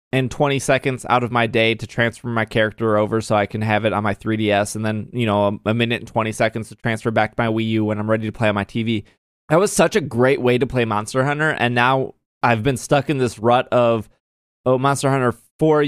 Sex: male